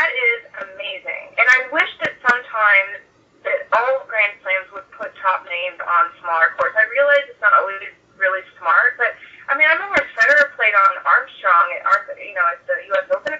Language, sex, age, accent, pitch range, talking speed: English, female, 20-39, American, 205-300 Hz, 195 wpm